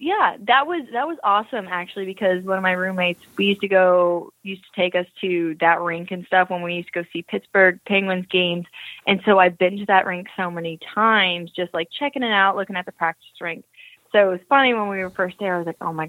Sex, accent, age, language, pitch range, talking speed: female, American, 20-39, English, 170-195 Hz, 255 wpm